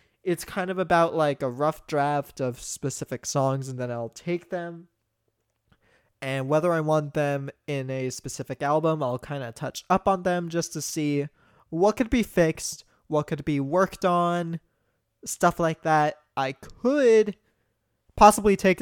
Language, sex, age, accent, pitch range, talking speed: English, male, 20-39, American, 125-175 Hz, 165 wpm